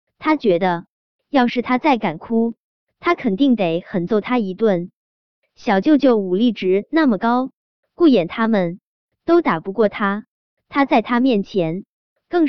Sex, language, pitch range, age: male, Chinese, 195-290 Hz, 20-39